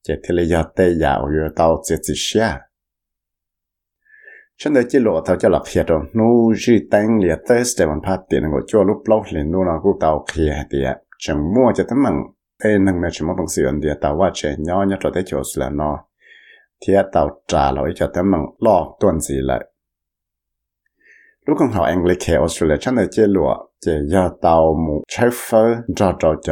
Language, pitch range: Malay, 75-105 Hz